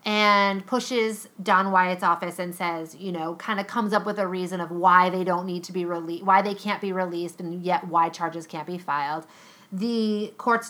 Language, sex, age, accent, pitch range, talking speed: English, female, 30-49, American, 175-225 Hz, 215 wpm